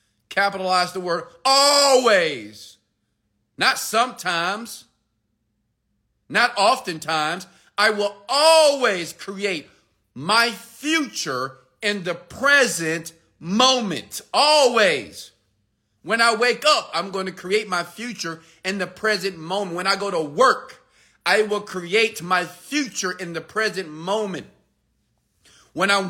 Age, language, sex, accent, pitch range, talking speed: 40-59, English, male, American, 165-225 Hz, 115 wpm